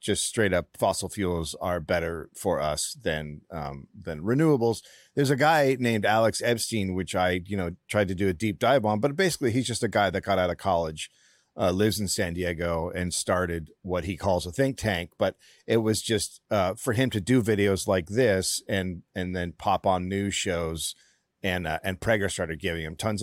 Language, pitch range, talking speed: English, 90-125 Hz, 210 wpm